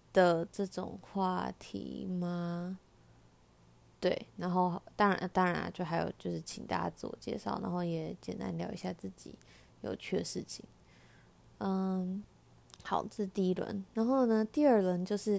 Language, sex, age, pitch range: Chinese, female, 20-39, 170-200 Hz